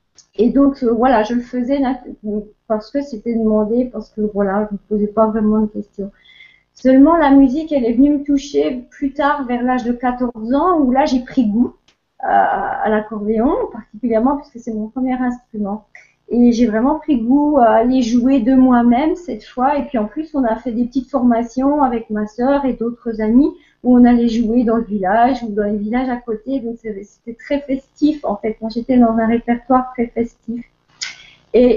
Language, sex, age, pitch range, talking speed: French, female, 30-49, 220-270 Hz, 200 wpm